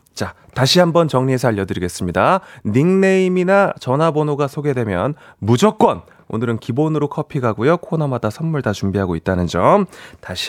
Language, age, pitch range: Korean, 30-49, 120-180 Hz